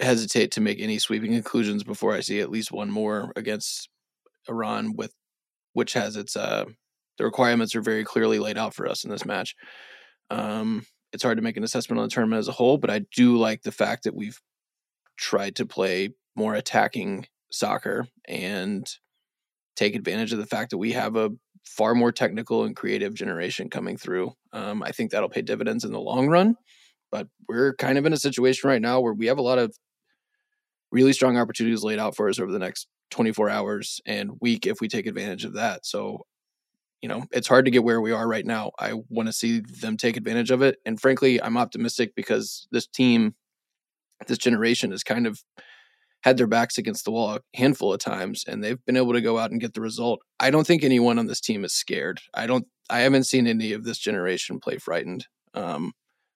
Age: 20-39